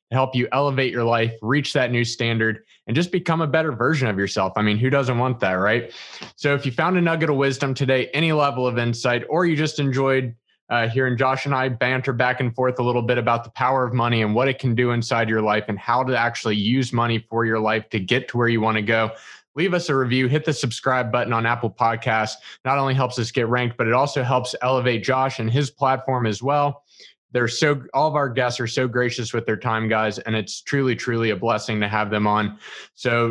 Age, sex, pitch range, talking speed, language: 20-39, male, 115-140 Hz, 245 wpm, English